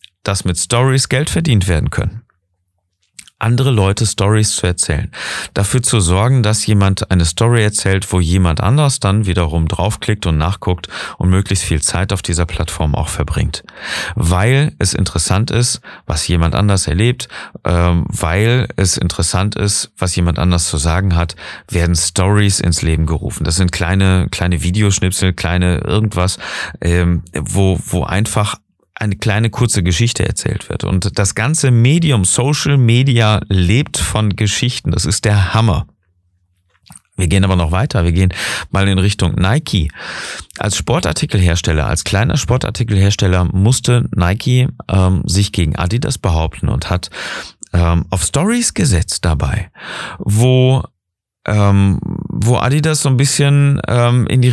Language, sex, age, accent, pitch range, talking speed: German, male, 40-59, German, 90-115 Hz, 140 wpm